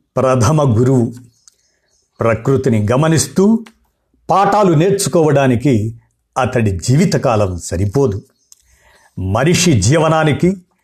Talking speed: 60 wpm